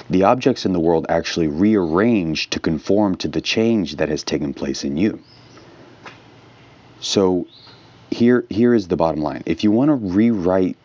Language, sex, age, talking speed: English, male, 30-49, 165 wpm